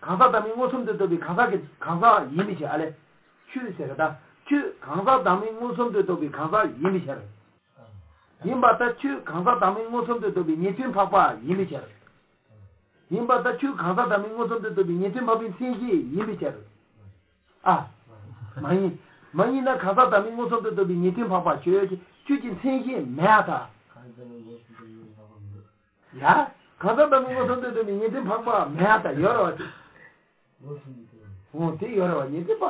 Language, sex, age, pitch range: English, male, 60-79, 150-230 Hz